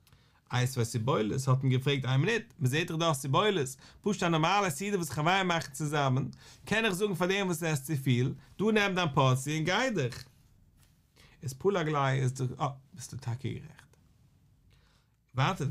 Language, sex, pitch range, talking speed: English, male, 130-185 Hz, 205 wpm